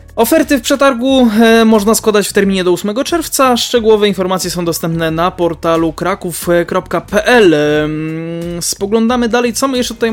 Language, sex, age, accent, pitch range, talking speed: Polish, male, 20-39, native, 180-225 Hz, 135 wpm